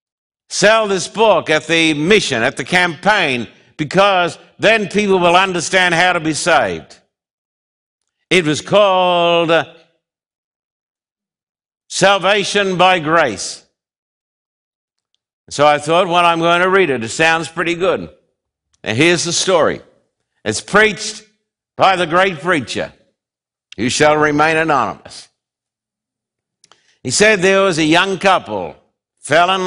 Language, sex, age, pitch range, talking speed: English, male, 60-79, 155-190 Hz, 120 wpm